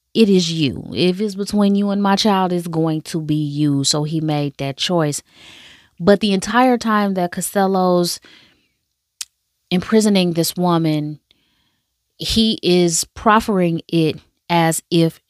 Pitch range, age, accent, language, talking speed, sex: 160-195 Hz, 20-39, American, English, 135 wpm, female